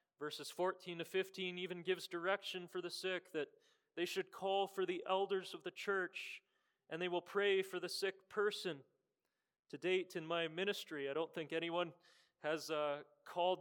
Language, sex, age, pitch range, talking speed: English, male, 30-49, 155-195 Hz, 175 wpm